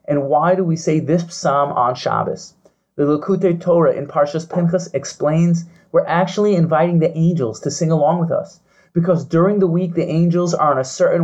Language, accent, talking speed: English, American, 190 wpm